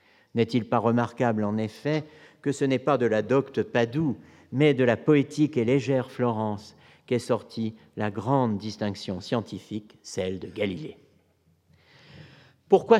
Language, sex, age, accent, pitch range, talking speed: French, male, 50-69, French, 110-150 Hz, 140 wpm